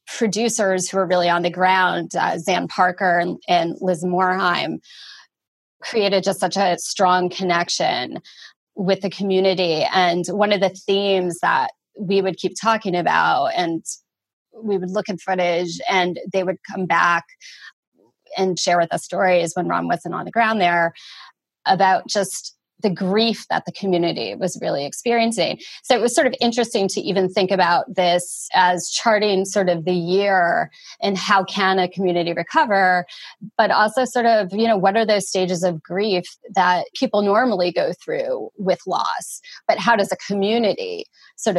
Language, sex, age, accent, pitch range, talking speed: English, female, 20-39, American, 180-220 Hz, 165 wpm